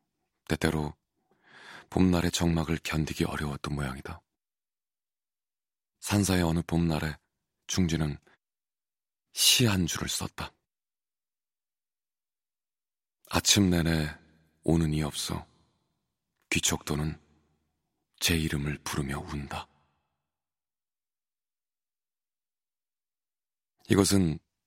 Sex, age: male, 30-49